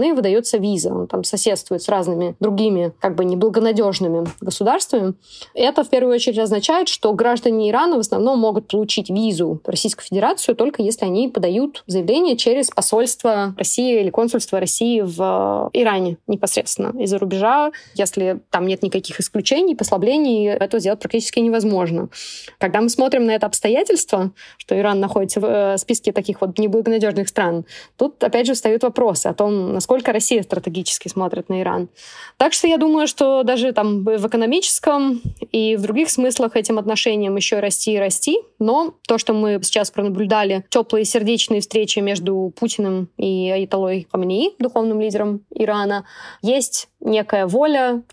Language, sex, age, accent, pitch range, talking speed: Russian, female, 20-39, native, 195-235 Hz, 155 wpm